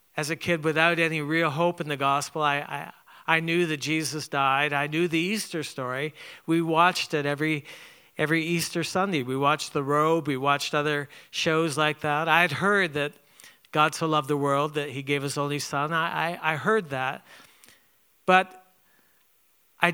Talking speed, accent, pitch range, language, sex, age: 185 wpm, American, 145-180 Hz, English, male, 50-69